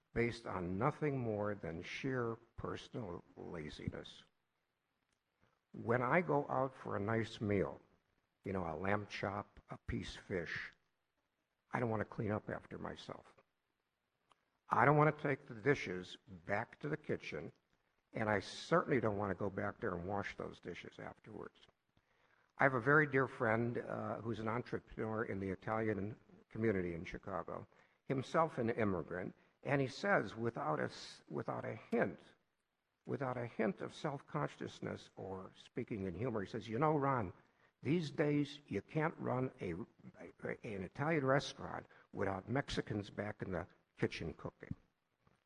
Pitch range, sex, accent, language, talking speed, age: 100-135 Hz, male, American, English, 155 wpm, 60-79